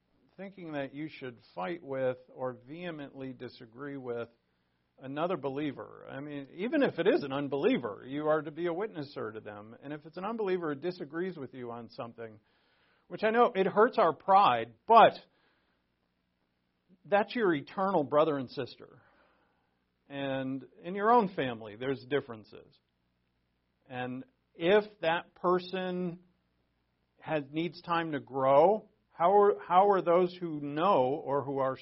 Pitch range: 110-165 Hz